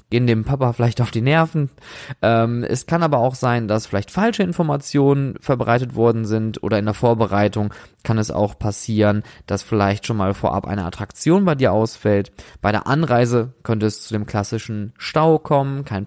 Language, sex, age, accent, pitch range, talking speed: German, male, 20-39, German, 110-140 Hz, 185 wpm